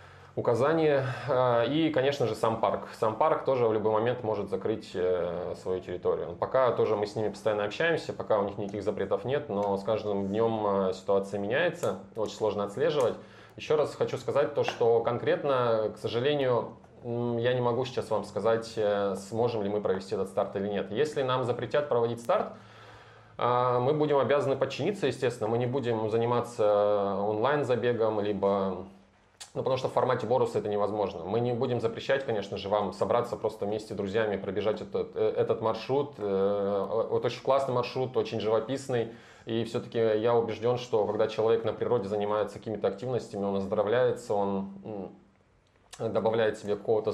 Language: Russian